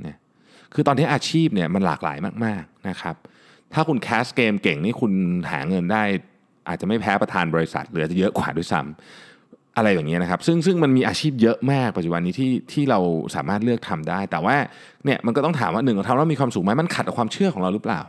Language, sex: Thai, male